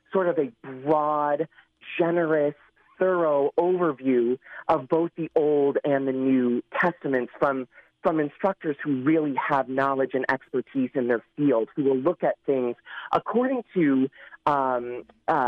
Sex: male